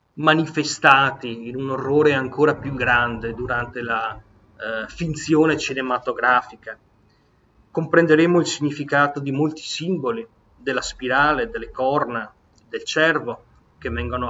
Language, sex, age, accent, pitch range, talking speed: Italian, male, 30-49, native, 120-150 Hz, 110 wpm